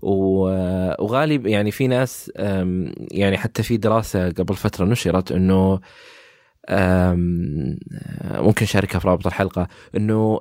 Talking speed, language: 105 wpm, Arabic